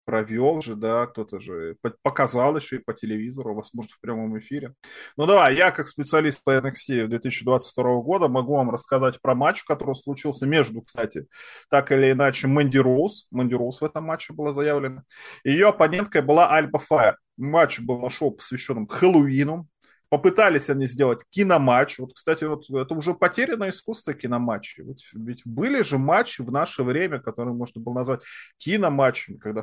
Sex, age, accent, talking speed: male, 20-39, native, 155 wpm